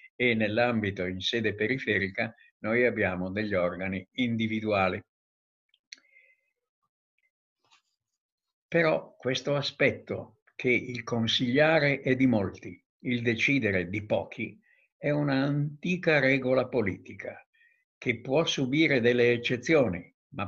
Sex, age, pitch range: male, 60-79, 105-135 Hz